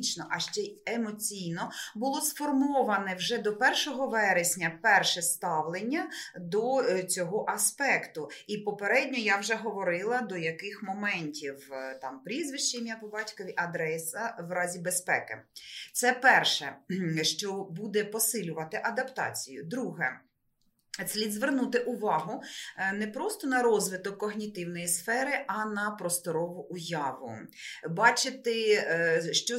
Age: 30-49